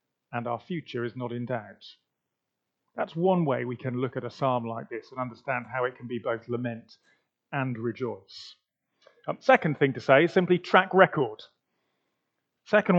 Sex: male